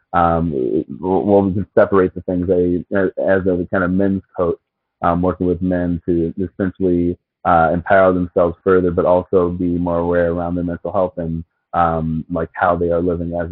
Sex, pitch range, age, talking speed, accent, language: male, 85-95 Hz, 30-49, 185 wpm, American, English